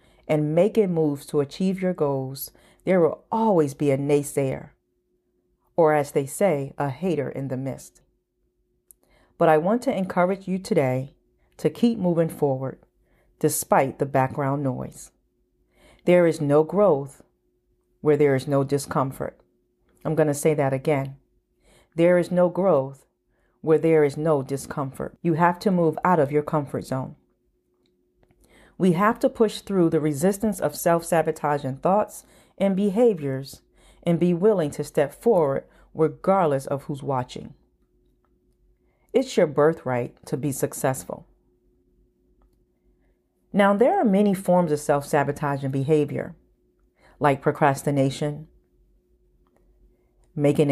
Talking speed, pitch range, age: 130 wpm, 135-170 Hz, 40-59